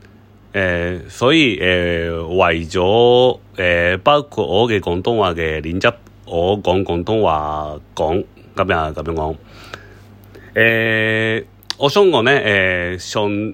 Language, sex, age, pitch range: Japanese, male, 30-49, 90-110 Hz